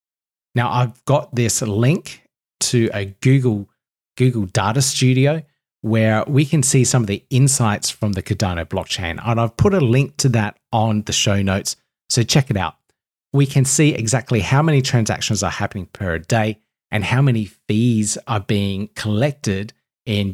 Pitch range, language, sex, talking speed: 100-135 Hz, English, male, 170 wpm